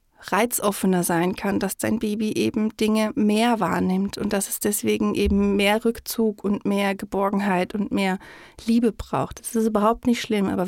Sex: female